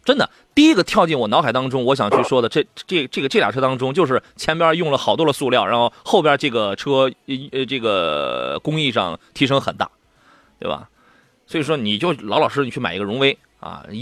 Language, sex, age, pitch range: Chinese, male, 30-49, 130-180 Hz